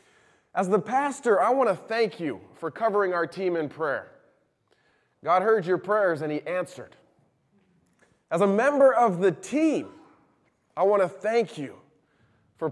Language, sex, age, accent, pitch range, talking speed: English, male, 20-39, American, 170-220 Hz, 155 wpm